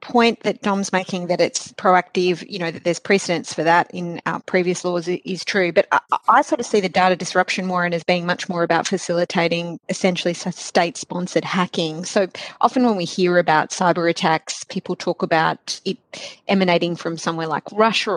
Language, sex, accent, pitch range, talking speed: English, female, Australian, 170-195 Hz, 185 wpm